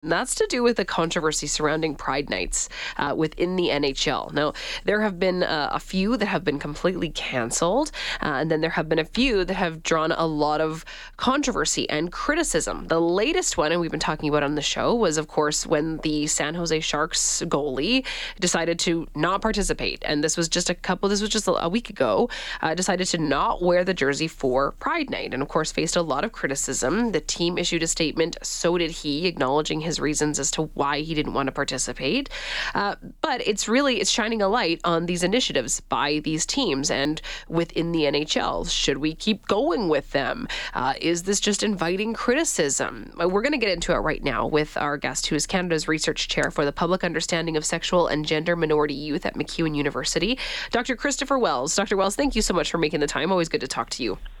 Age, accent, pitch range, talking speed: 20-39, American, 150-195 Hz, 215 wpm